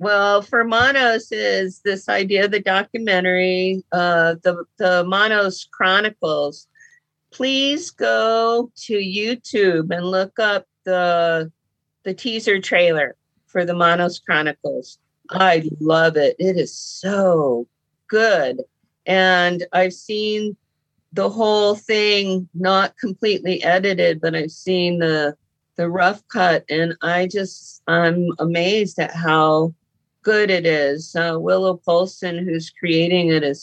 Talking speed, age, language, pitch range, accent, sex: 125 wpm, 50-69, English, 165-200 Hz, American, female